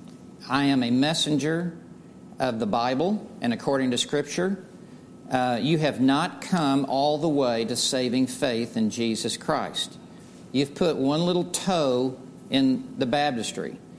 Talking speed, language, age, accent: 140 wpm, English, 50-69, American